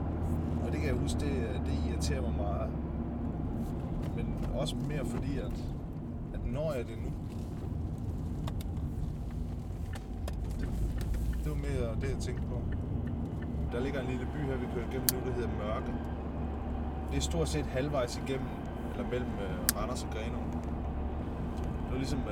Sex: male